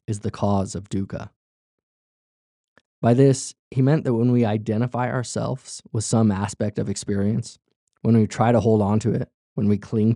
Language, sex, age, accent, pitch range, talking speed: English, male, 20-39, American, 100-120 Hz, 175 wpm